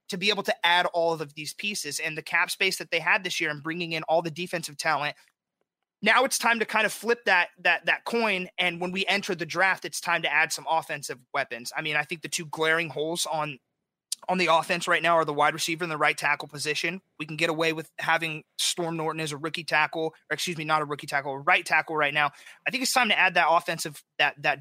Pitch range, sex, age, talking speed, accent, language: 155-180 Hz, male, 30-49, 255 wpm, American, English